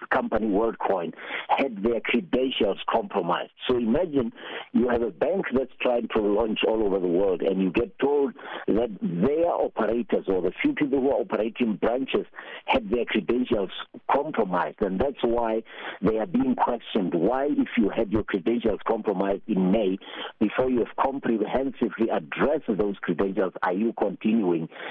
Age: 60-79